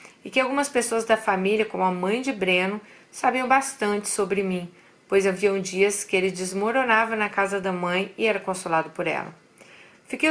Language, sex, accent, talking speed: Portuguese, female, Brazilian, 180 wpm